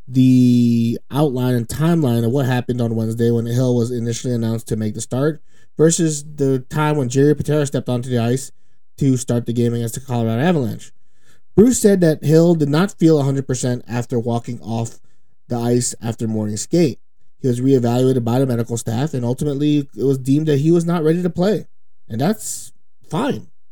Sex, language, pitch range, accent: male, English, 120-150 Hz, American